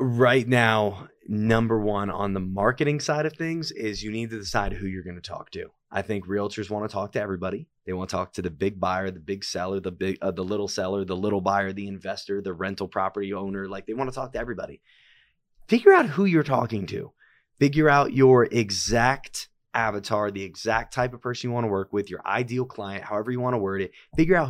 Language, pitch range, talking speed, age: English, 100-125 Hz, 230 wpm, 20-39